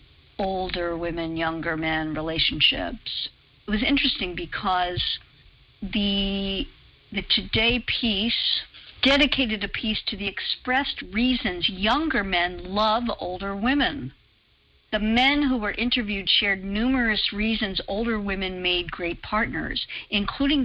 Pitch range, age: 170-220 Hz, 50-69